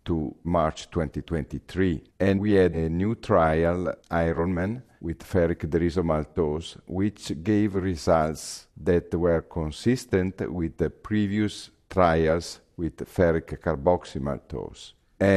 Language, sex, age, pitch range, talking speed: English, male, 50-69, 75-95 Hz, 100 wpm